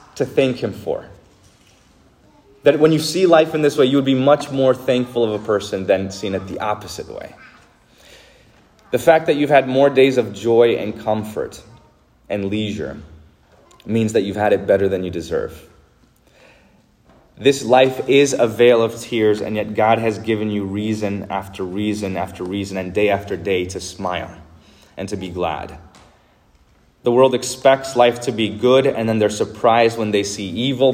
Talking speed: 180 wpm